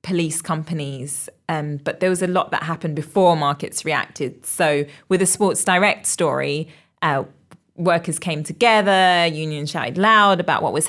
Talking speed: 160 wpm